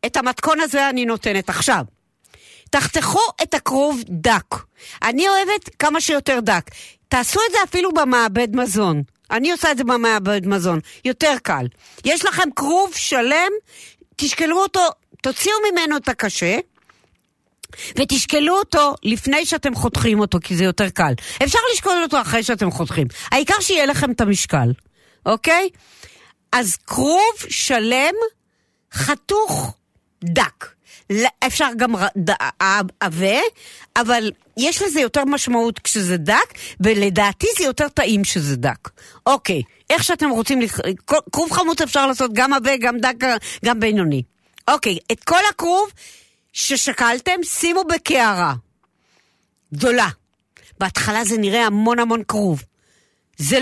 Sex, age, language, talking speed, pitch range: female, 50-69, Hebrew, 125 wpm, 200-310 Hz